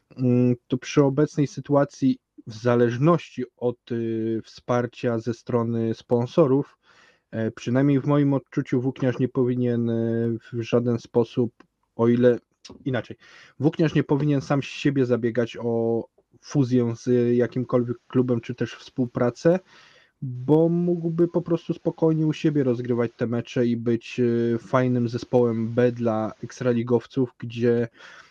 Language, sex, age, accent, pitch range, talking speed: Polish, male, 20-39, native, 120-135 Hz, 125 wpm